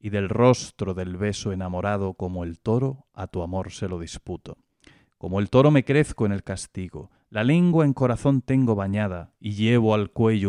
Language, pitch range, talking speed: Spanish, 95-120 Hz, 190 wpm